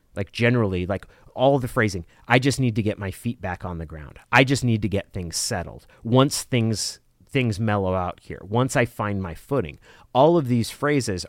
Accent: American